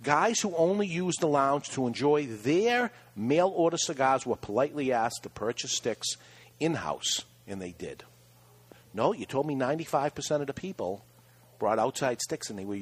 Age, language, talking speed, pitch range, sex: 50-69, English, 165 wpm, 105-145 Hz, male